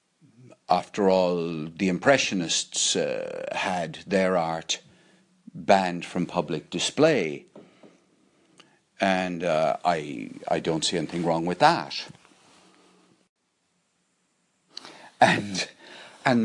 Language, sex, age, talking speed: English, male, 60-79, 90 wpm